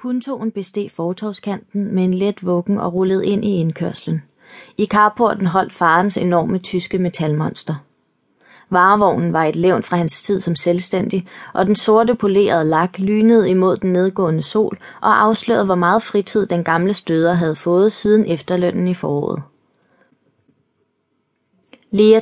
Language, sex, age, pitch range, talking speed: Danish, female, 30-49, 175-205 Hz, 145 wpm